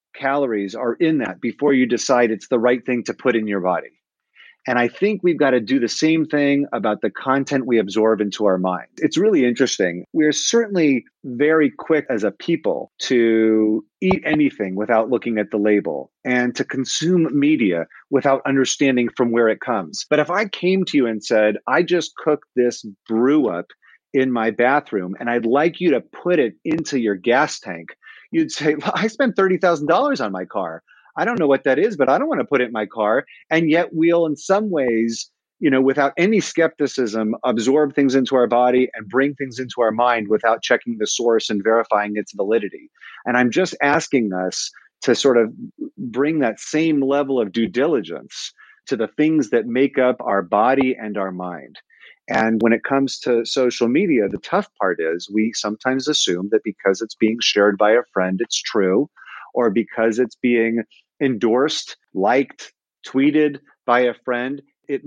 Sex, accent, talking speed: male, American, 190 wpm